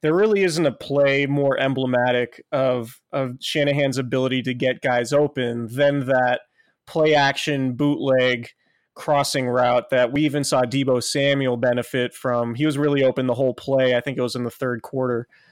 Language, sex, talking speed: English, male, 170 wpm